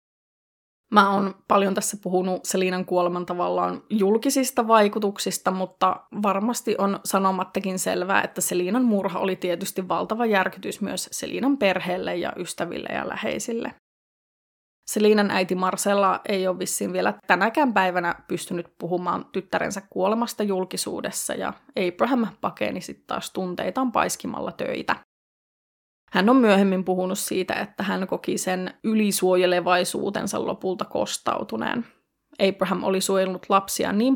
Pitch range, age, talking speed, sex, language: 185-210 Hz, 20-39, 120 wpm, female, Finnish